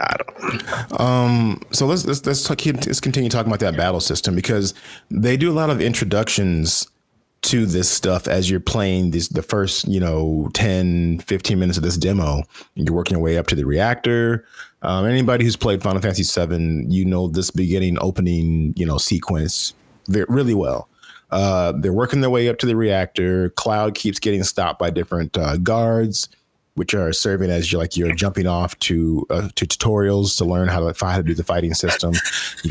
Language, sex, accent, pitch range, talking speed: English, male, American, 85-105 Hz, 195 wpm